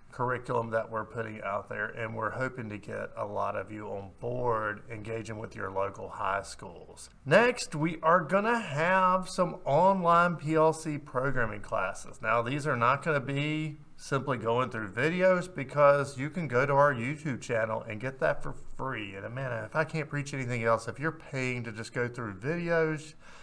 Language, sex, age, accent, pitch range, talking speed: English, male, 40-59, American, 115-165 Hz, 190 wpm